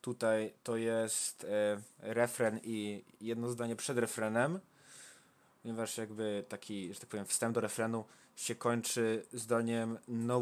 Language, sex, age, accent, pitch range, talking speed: Polish, male, 20-39, native, 110-130 Hz, 125 wpm